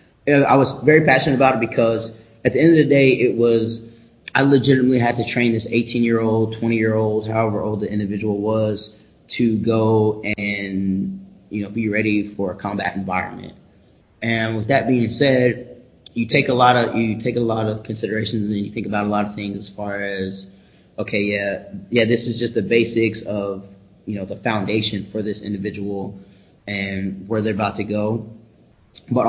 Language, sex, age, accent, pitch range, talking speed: English, male, 20-39, American, 100-115 Hz, 185 wpm